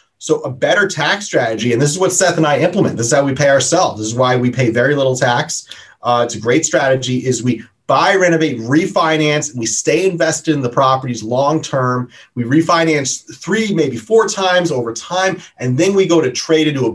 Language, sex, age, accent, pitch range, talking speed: English, male, 30-49, American, 130-170 Hz, 215 wpm